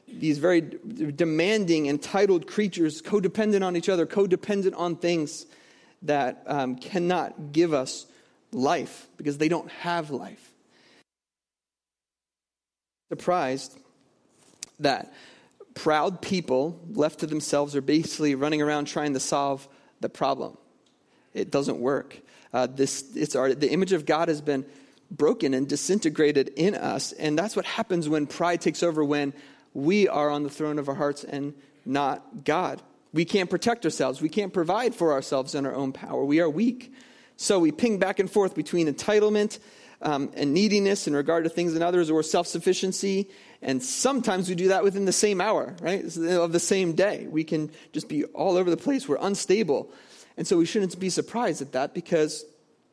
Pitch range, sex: 145-190 Hz, male